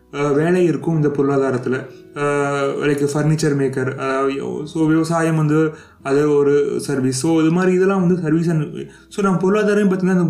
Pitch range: 140-175 Hz